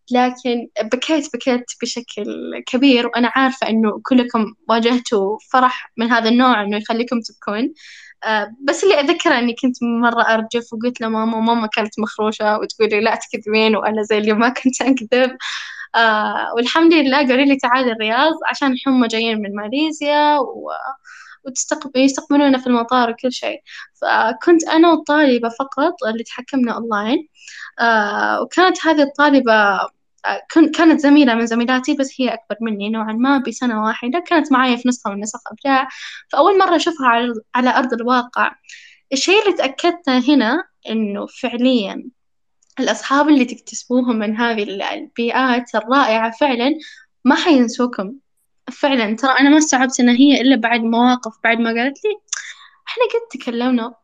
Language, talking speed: Arabic, 135 wpm